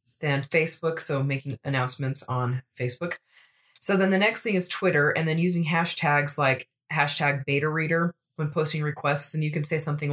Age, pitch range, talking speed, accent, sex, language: 20-39, 140-175 Hz, 180 wpm, American, female, English